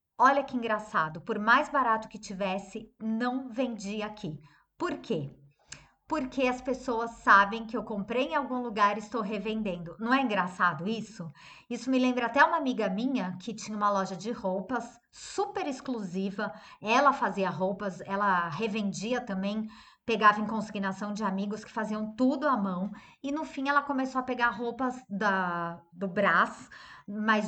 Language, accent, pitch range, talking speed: Portuguese, Brazilian, 200-255 Hz, 160 wpm